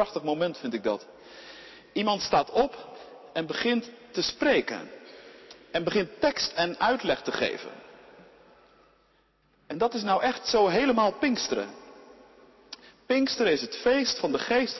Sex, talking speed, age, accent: male, 140 wpm, 50-69, Dutch